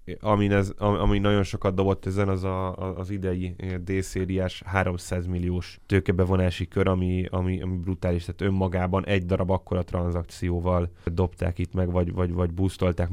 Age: 10-29